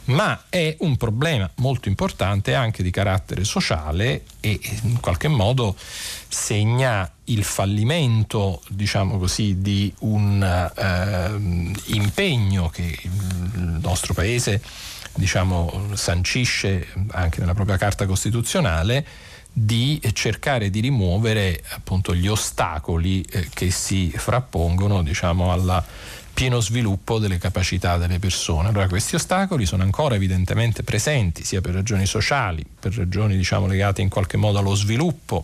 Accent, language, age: native, Italian, 40-59